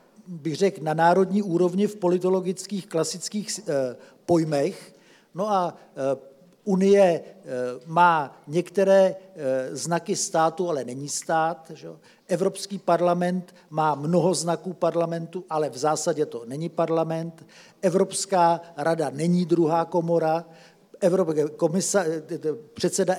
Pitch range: 160-185 Hz